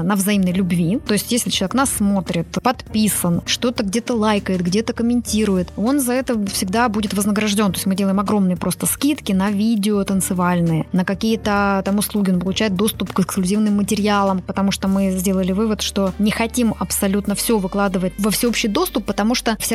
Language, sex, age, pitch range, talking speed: Russian, female, 20-39, 195-235 Hz, 175 wpm